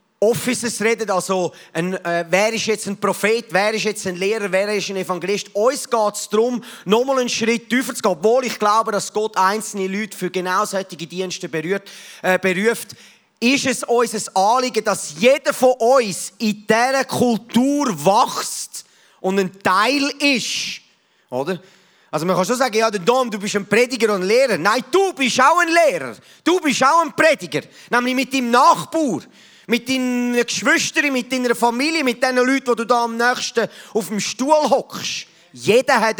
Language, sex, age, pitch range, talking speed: German, male, 30-49, 195-245 Hz, 185 wpm